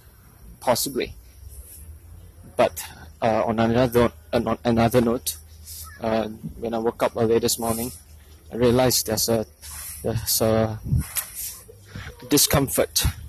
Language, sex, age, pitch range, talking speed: English, male, 20-39, 100-130 Hz, 105 wpm